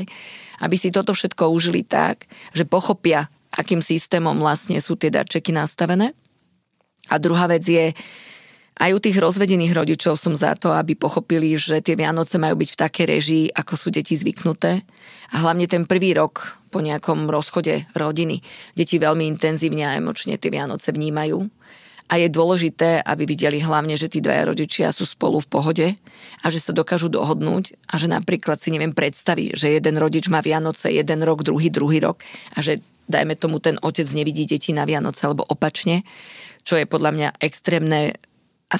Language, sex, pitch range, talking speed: Slovak, female, 155-175 Hz, 170 wpm